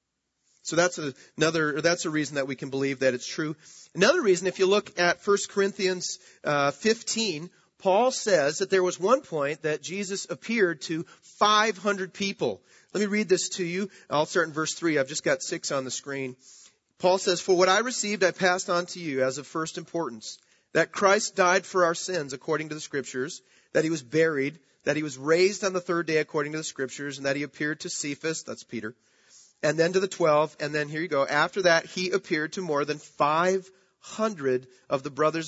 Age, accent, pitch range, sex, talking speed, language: 40-59, American, 150-190 Hz, male, 210 wpm, English